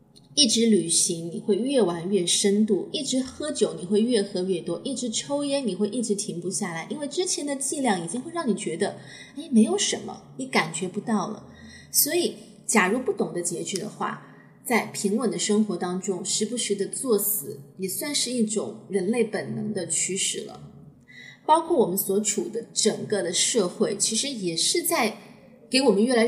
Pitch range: 195-245 Hz